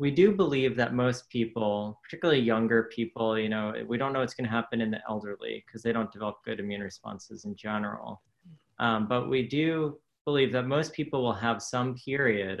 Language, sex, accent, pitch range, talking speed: English, male, American, 110-130 Hz, 200 wpm